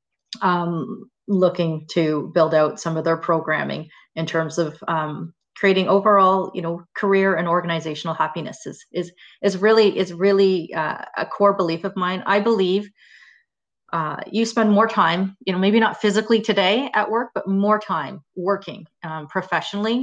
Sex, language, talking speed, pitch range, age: female, English, 160 wpm, 165-200 Hz, 30-49